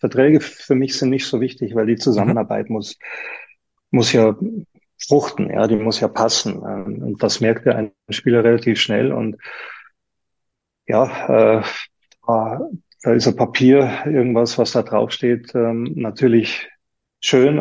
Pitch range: 110-125 Hz